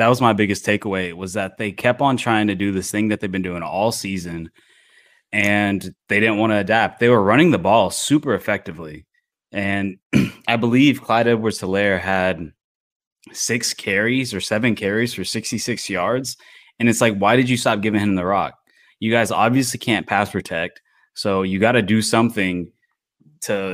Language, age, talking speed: English, 20-39, 185 wpm